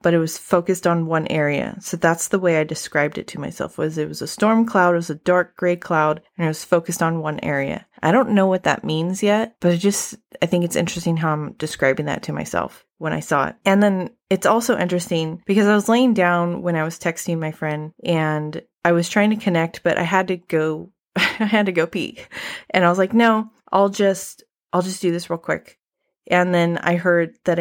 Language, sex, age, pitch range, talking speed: English, female, 20-39, 160-200 Hz, 235 wpm